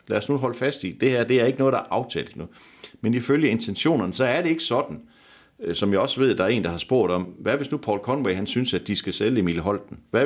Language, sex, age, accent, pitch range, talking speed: Danish, male, 60-79, native, 95-135 Hz, 290 wpm